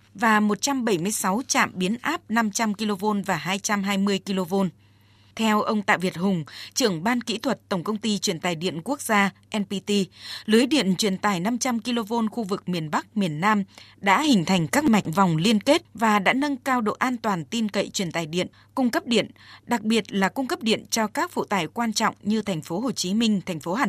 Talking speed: 210 wpm